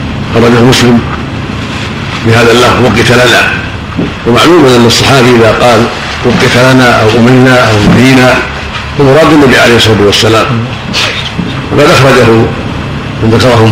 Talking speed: 120 wpm